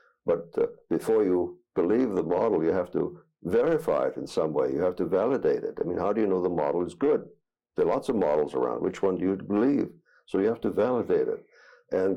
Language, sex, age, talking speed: English, male, 60-79, 235 wpm